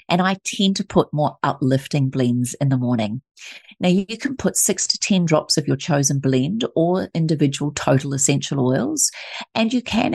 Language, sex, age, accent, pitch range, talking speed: English, female, 40-59, Australian, 135-165 Hz, 185 wpm